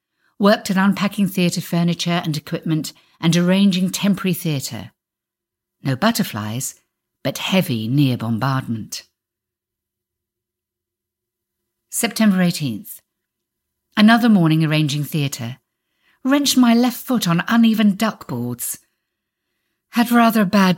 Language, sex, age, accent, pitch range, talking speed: English, female, 50-69, British, 135-205 Hz, 95 wpm